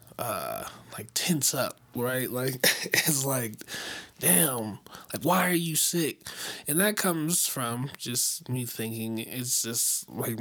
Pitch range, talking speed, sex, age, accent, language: 115-130 Hz, 140 wpm, male, 20-39, American, English